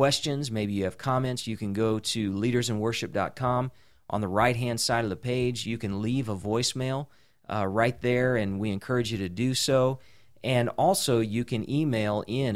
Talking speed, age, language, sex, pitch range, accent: 180 wpm, 40-59, English, male, 105-125 Hz, American